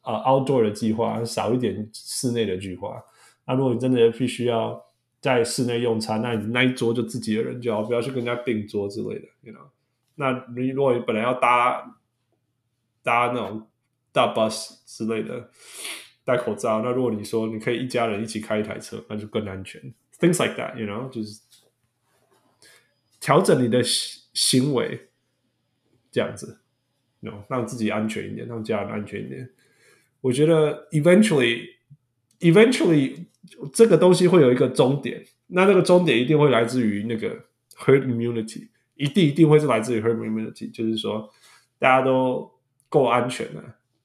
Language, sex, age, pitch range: Chinese, male, 20-39, 115-150 Hz